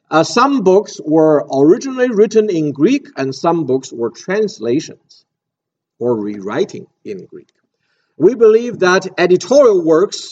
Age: 50-69